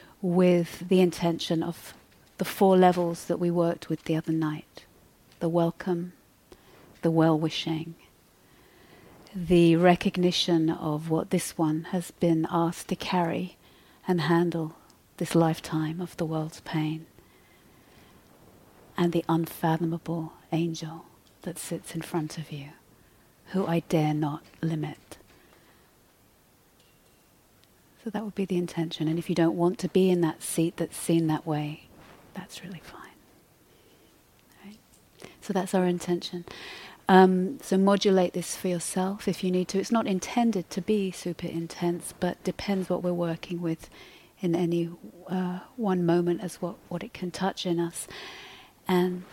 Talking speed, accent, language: 140 wpm, British, English